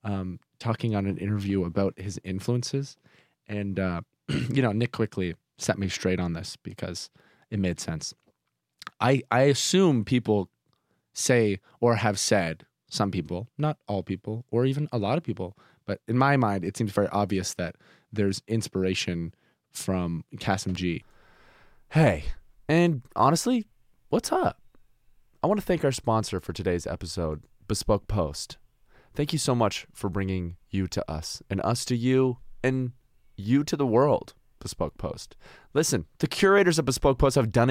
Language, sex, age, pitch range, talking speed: English, male, 20-39, 95-125 Hz, 160 wpm